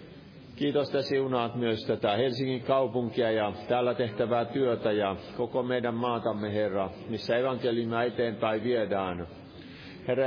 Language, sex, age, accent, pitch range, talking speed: Finnish, male, 50-69, native, 100-125 Hz, 125 wpm